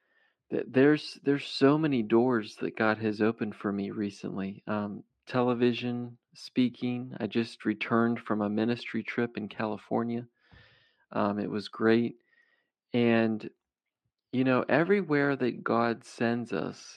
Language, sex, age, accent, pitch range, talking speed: English, male, 40-59, American, 110-125 Hz, 125 wpm